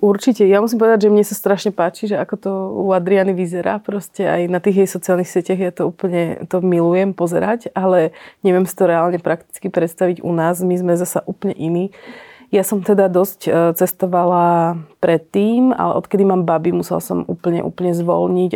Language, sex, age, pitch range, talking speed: Slovak, female, 30-49, 175-195 Hz, 190 wpm